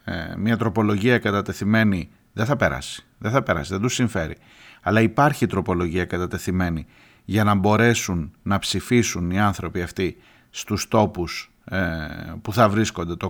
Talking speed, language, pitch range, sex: 145 wpm, Greek, 95-120 Hz, male